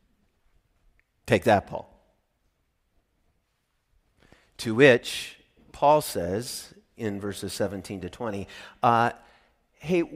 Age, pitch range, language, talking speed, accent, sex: 40-59, 95-130 Hz, English, 85 wpm, American, male